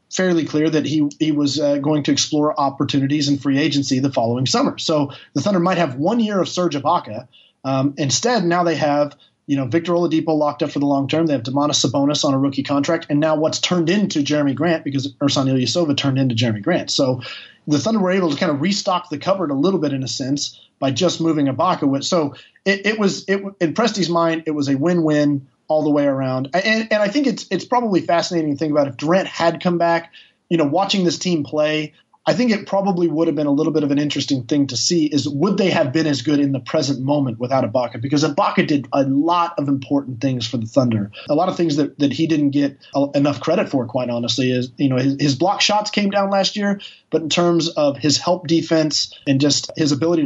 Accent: American